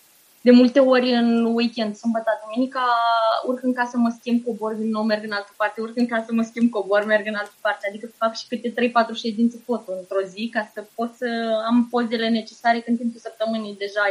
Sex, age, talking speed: female, 20-39, 210 wpm